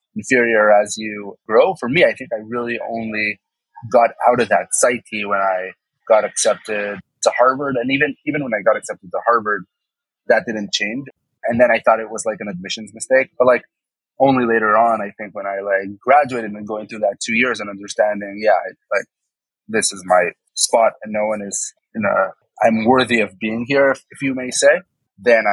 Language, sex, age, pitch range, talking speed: English, male, 30-49, 100-120 Hz, 205 wpm